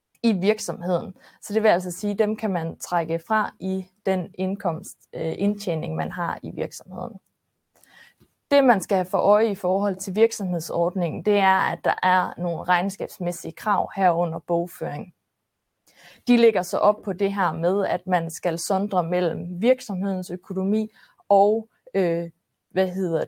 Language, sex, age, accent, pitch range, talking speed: Danish, female, 20-39, native, 175-215 Hz, 155 wpm